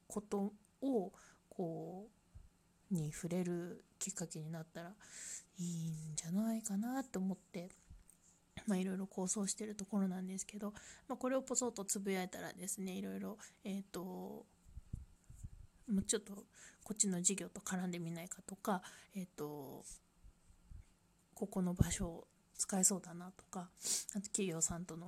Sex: female